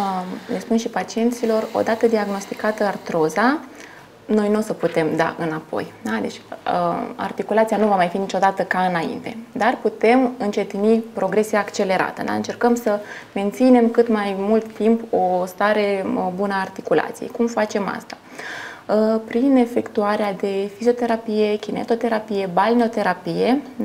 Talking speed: 125 wpm